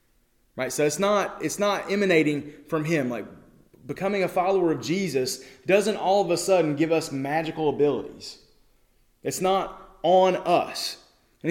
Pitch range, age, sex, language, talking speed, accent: 150-200 Hz, 30-49, male, English, 150 wpm, American